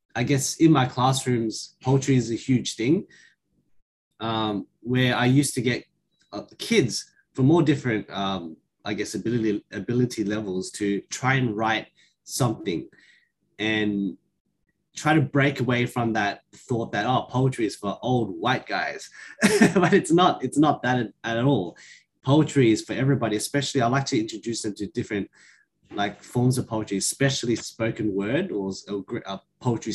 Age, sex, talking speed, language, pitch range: 20-39, male, 160 wpm, English, 105-130 Hz